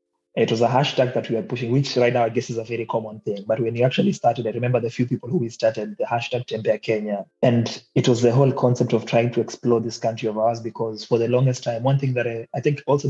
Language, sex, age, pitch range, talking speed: Swahili, male, 20-39, 115-130 Hz, 280 wpm